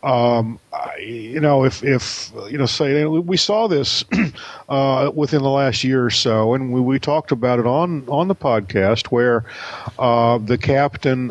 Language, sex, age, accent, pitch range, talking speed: English, male, 50-69, American, 115-140 Hz, 175 wpm